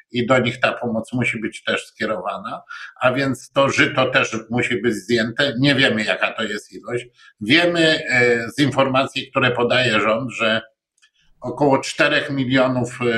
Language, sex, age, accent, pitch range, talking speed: Polish, male, 50-69, native, 110-135 Hz, 155 wpm